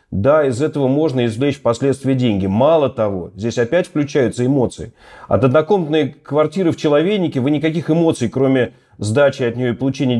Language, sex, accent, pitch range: Russian, male, native, 120-155 Hz